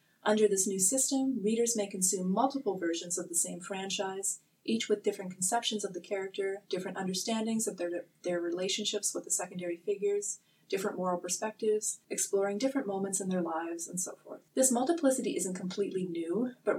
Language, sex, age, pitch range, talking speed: English, female, 30-49, 175-215 Hz, 170 wpm